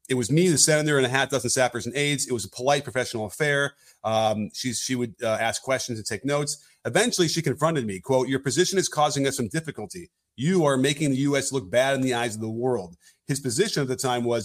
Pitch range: 120-140 Hz